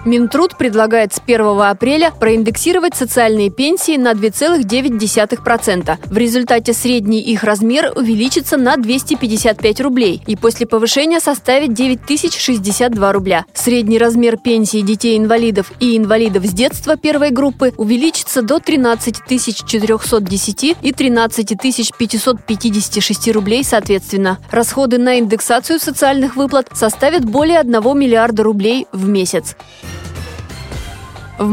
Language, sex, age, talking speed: Russian, female, 20-39, 105 wpm